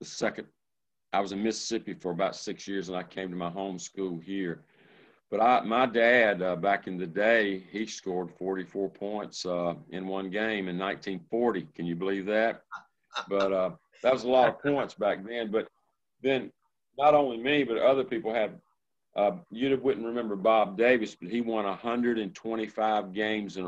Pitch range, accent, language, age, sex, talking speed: 90-115 Hz, American, English, 50-69, male, 180 wpm